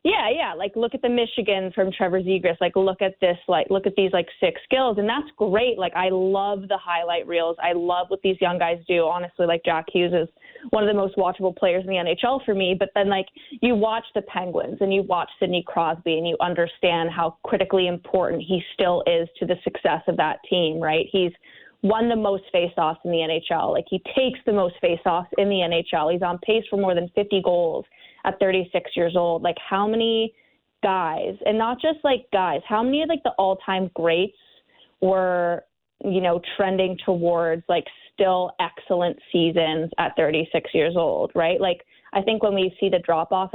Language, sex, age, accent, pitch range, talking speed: English, female, 20-39, American, 170-200 Hz, 205 wpm